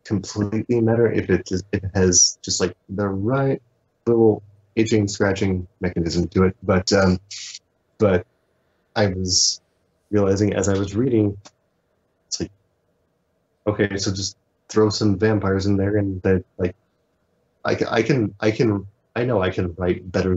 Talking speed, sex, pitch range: 150 wpm, male, 95-110 Hz